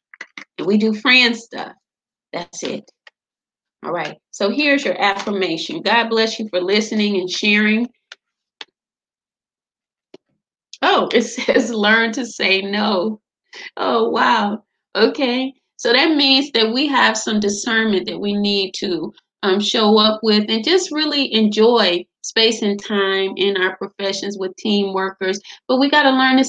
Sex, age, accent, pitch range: female, 30-49, American, 200-260 Hz